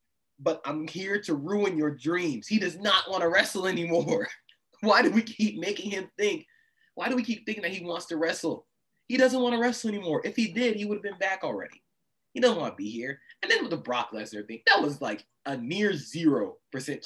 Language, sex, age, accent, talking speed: English, male, 20-39, American, 230 wpm